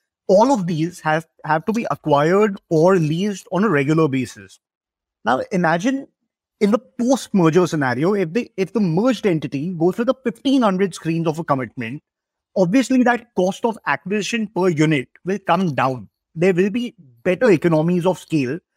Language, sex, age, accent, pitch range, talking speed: English, male, 20-39, Indian, 160-215 Hz, 160 wpm